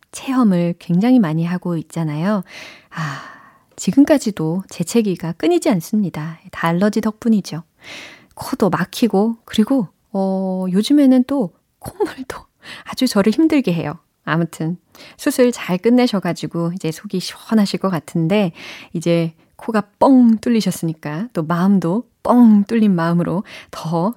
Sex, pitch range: female, 175-250 Hz